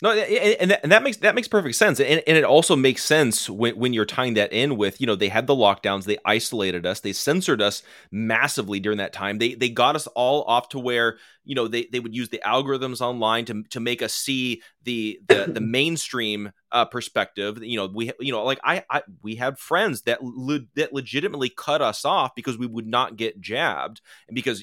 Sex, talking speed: male, 220 wpm